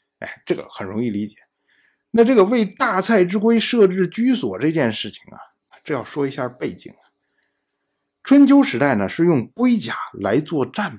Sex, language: male, Chinese